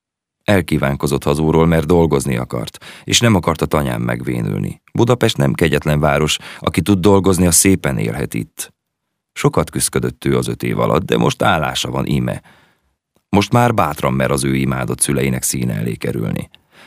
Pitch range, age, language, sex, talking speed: 65-90 Hz, 30-49, Hungarian, male, 160 wpm